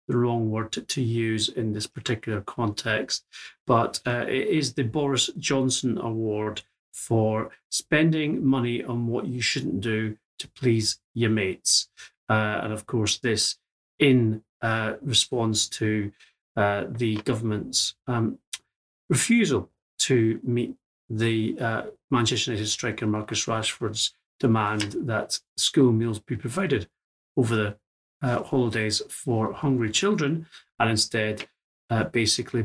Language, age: English, 40-59